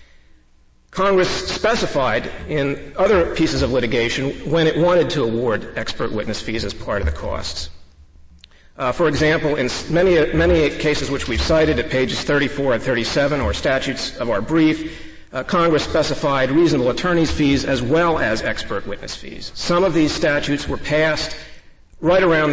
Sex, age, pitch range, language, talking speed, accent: male, 50-69, 105-155 Hz, English, 160 wpm, American